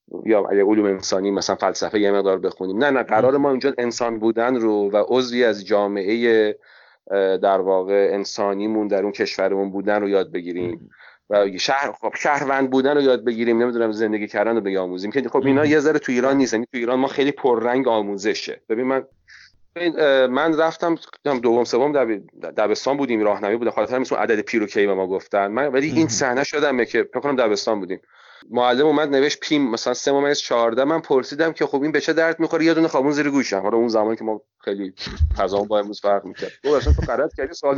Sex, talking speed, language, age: male, 190 wpm, Persian, 30-49